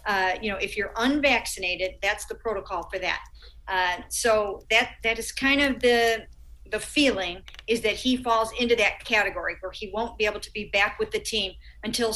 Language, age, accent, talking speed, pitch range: English, 50-69, American, 195 wpm, 195-230 Hz